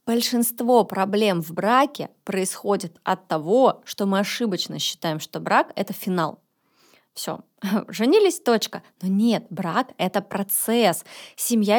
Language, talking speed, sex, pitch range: Russian, 130 wpm, female, 195-235 Hz